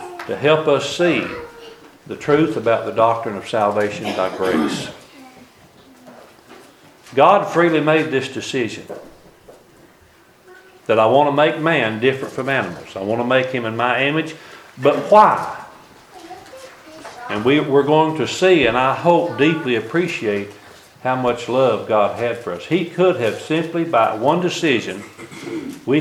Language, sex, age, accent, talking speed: English, male, 50-69, American, 145 wpm